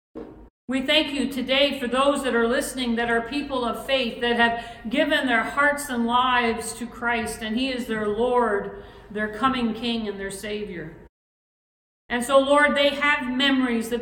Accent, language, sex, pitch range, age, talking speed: American, English, female, 225-265 Hz, 50-69, 175 wpm